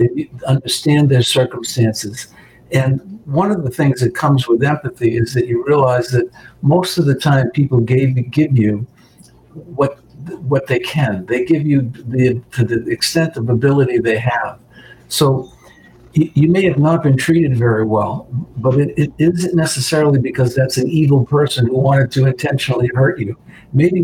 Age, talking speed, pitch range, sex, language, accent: 60-79, 165 wpm, 125-155 Hz, male, English, American